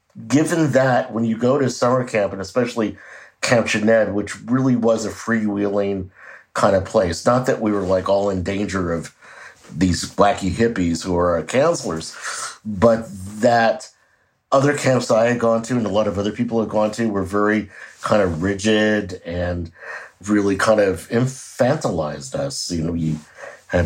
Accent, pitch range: American, 95-120 Hz